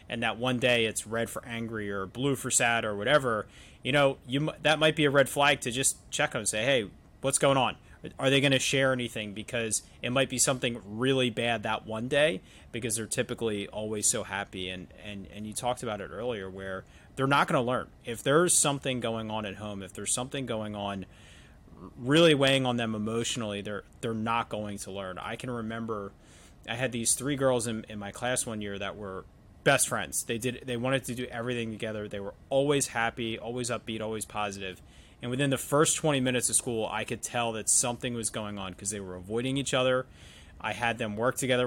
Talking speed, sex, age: 220 wpm, male, 30-49